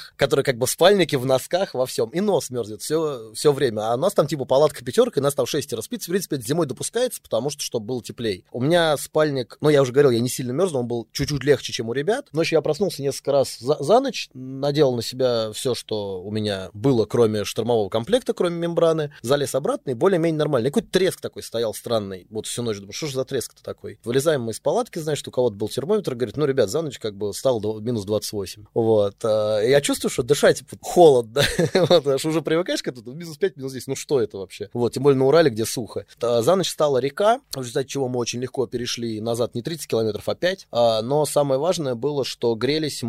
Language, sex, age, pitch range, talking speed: Russian, male, 20-39, 120-155 Hz, 235 wpm